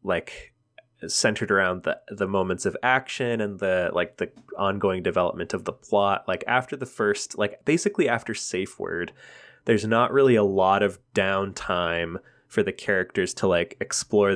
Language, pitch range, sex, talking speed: English, 85-105 Hz, male, 165 wpm